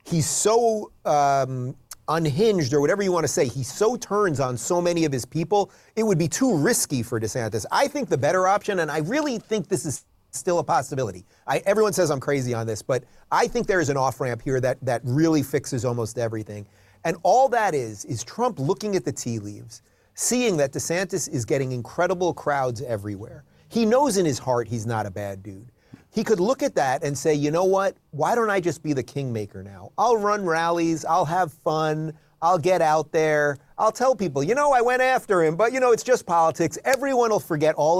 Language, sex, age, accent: English, male, 30-49, American